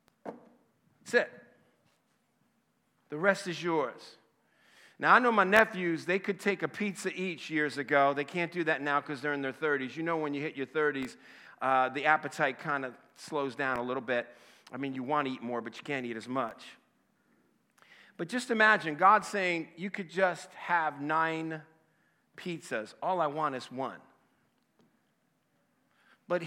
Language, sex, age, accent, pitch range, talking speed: English, male, 50-69, American, 145-180 Hz, 170 wpm